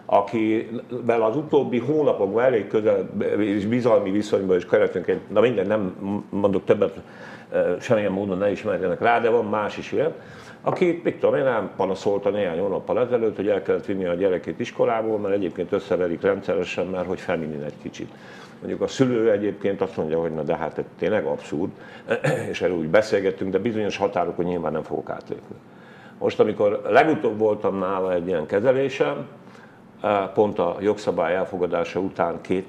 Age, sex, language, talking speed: 50-69, male, Hungarian, 165 wpm